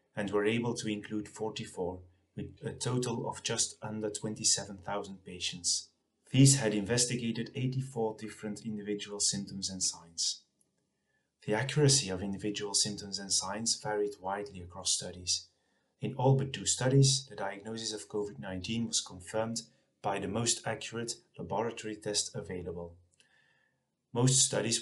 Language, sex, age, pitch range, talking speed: English, male, 30-49, 100-120 Hz, 130 wpm